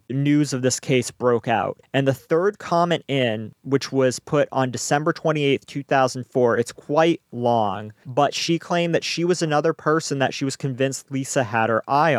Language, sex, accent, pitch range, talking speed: English, male, American, 125-150 Hz, 180 wpm